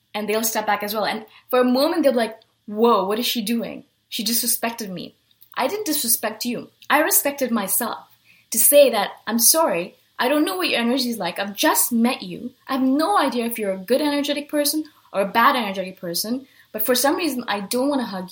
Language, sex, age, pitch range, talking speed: English, female, 20-39, 215-280 Hz, 225 wpm